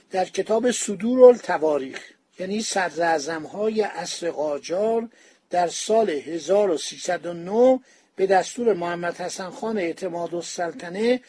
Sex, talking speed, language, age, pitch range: male, 90 wpm, Persian, 50-69, 175-230 Hz